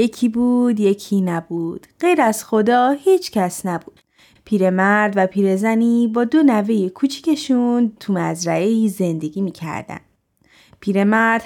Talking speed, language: 115 wpm, Persian